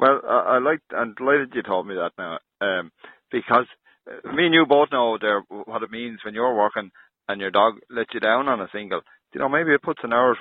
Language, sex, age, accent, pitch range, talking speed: English, male, 30-49, Irish, 100-145 Hz, 235 wpm